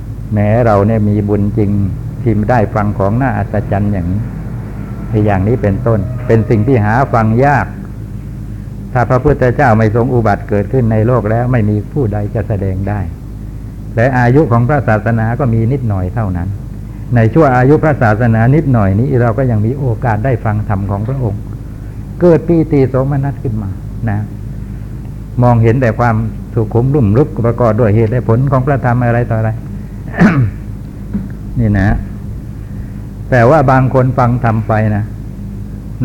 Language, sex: Thai, male